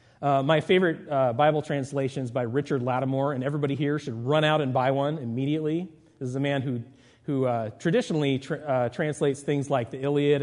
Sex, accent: male, American